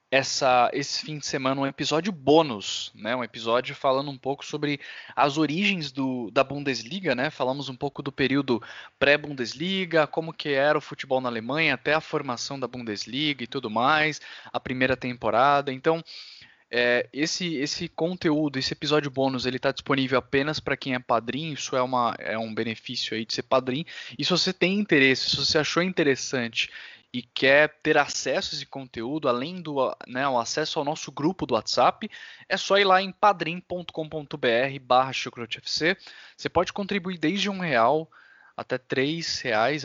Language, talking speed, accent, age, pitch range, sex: Portuguese, 170 wpm, Brazilian, 20-39, 130-155 Hz, male